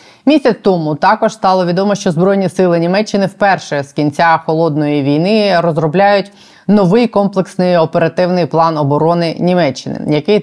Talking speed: 125 wpm